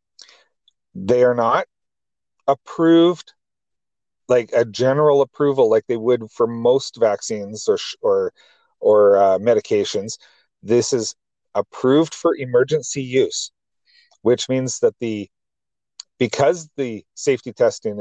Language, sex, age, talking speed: English, male, 40-59, 115 wpm